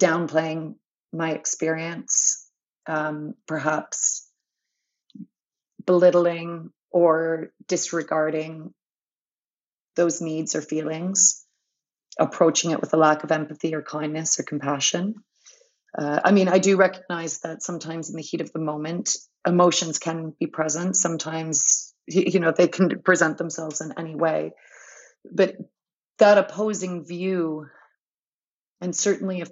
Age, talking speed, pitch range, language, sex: 30-49, 120 wpm, 160-180 Hz, English, female